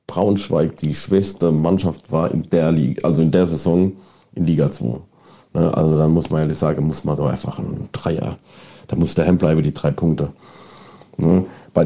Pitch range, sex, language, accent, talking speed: 85-105 Hz, male, German, German, 180 wpm